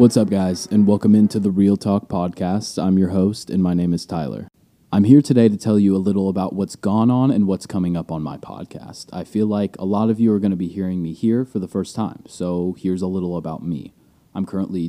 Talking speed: 255 wpm